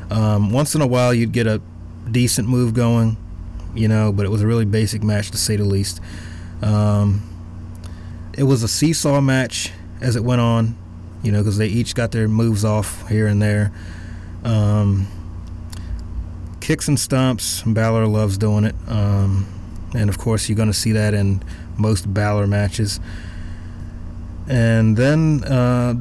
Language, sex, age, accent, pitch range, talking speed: English, male, 30-49, American, 85-115 Hz, 160 wpm